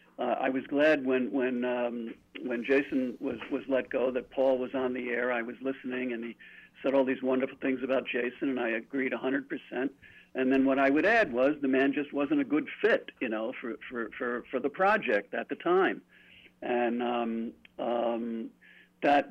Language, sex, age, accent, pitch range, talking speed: English, male, 50-69, American, 125-145 Hz, 200 wpm